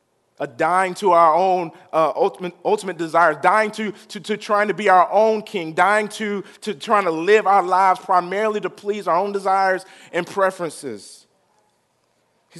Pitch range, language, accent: 180-215 Hz, English, American